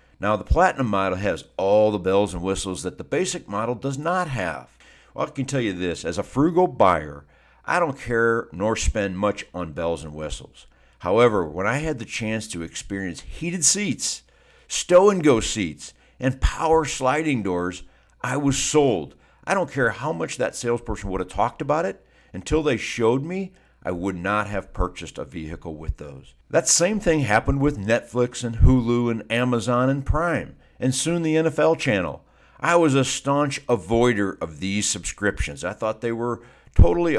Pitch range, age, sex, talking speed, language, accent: 95-135 Hz, 60-79, male, 180 wpm, English, American